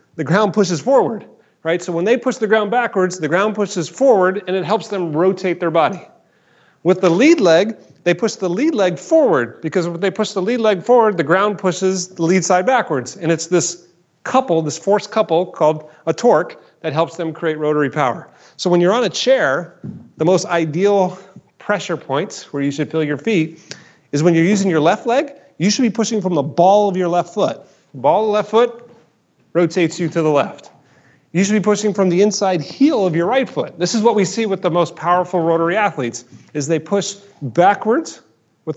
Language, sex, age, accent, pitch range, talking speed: English, male, 30-49, American, 160-200 Hz, 210 wpm